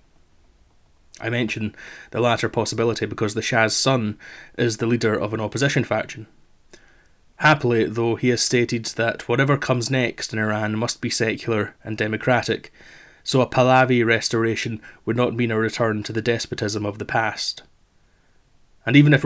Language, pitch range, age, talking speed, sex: English, 110-125 Hz, 20-39, 155 wpm, male